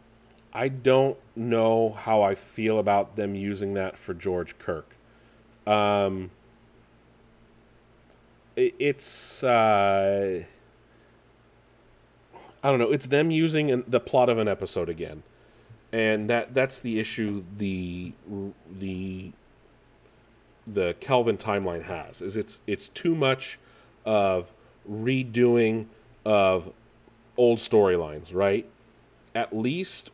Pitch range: 105-120 Hz